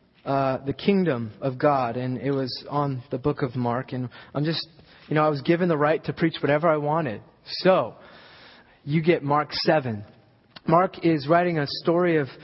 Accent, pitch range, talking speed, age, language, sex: American, 130-160 Hz, 190 wpm, 20-39, English, male